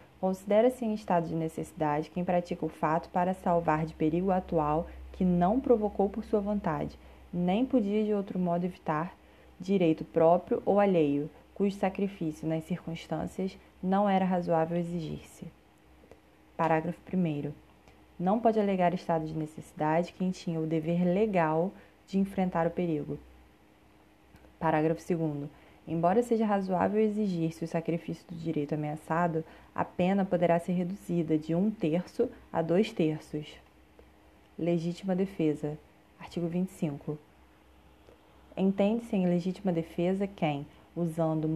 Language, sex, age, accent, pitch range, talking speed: Portuguese, female, 20-39, Brazilian, 160-190 Hz, 125 wpm